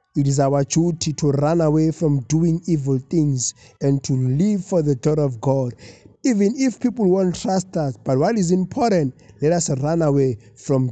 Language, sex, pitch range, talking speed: English, male, 130-180 Hz, 185 wpm